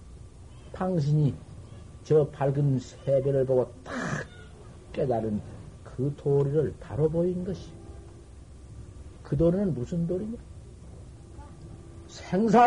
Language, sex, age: Korean, male, 50-69